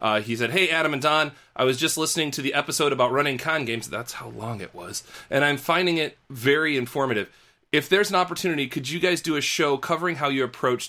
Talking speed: 235 wpm